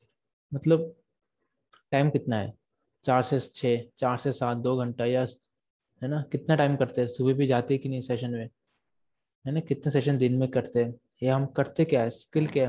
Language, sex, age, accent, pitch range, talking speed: Hindi, male, 20-39, native, 120-140 Hz, 195 wpm